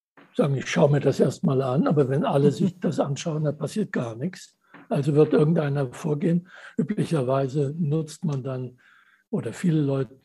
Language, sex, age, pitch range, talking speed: German, male, 60-79, 135-175 Hz, 160 wpm